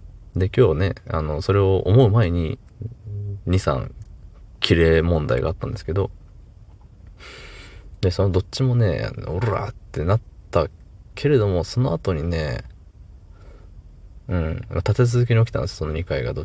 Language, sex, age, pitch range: Japanese, male, 20-39, 85-105 Hz